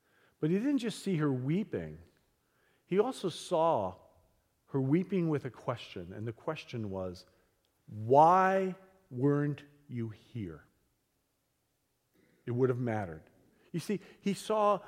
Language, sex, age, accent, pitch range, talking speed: English, male, 50-69, American, 120-170 Hz, 125 wpm